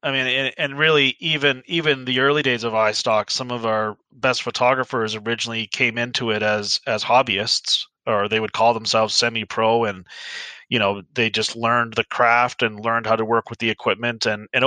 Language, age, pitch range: English, 30-49, 120-150 Hz